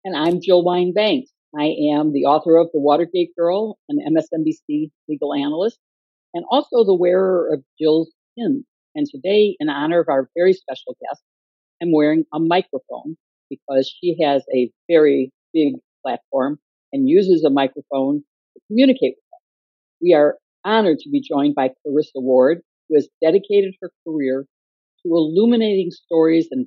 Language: English